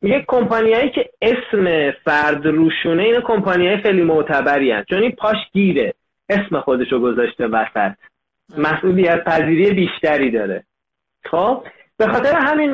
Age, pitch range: 30-49, 170-250 Hz